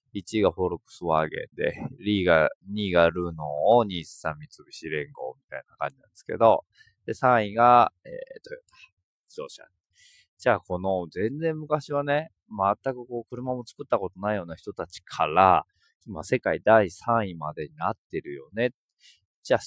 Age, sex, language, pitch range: 20-39, male, Japanese, 95-150 Hz